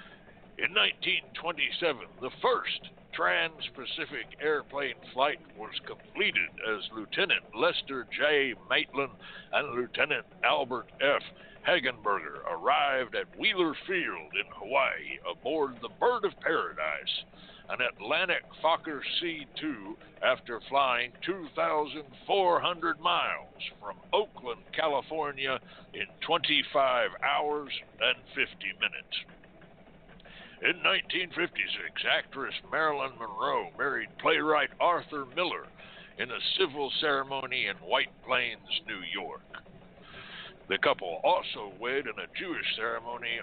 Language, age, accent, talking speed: English, 60-79, American, 100 wpm